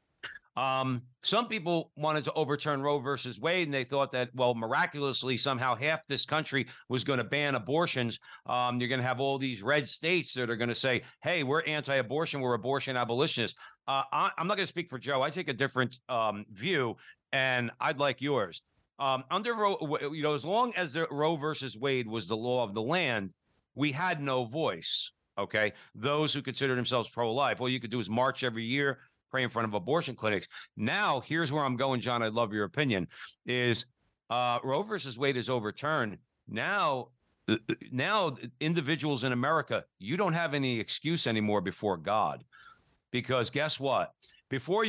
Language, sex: English, male